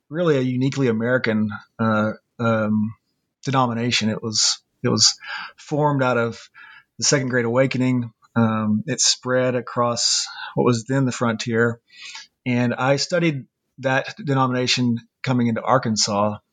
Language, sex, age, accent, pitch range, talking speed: English, male, 30-49, American, 115-140 Hz, 125 wpm